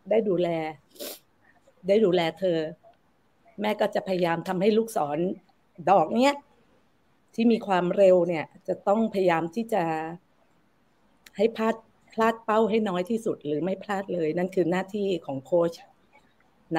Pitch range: 170-210 Hz